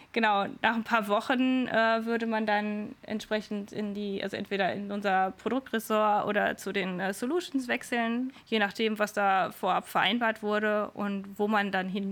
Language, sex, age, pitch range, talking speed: German, female, 20-39, 195-230 Hz, 175 wpm